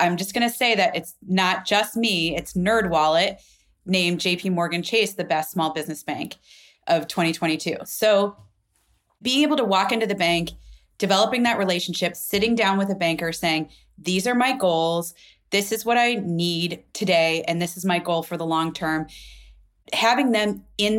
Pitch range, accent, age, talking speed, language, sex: 170-215 Hz, American, 30-49, 175 wpm, English, female